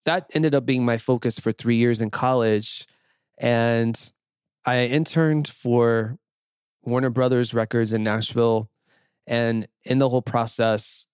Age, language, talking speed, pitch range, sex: 20-39, English, 135 wpm, 110-125 Hz, male